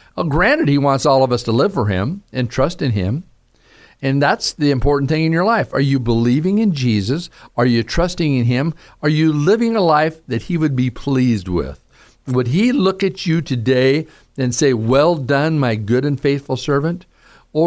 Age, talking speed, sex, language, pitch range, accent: 50-69, 200 wpm, male, English, 120-160 Hz, American